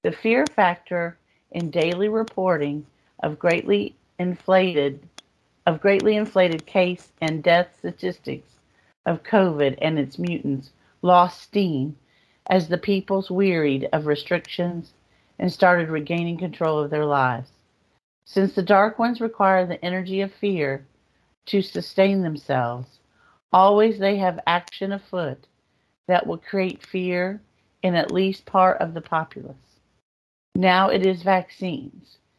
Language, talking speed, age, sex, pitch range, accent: English, 125 wpm, 50-69, female, 150-190 Hz, American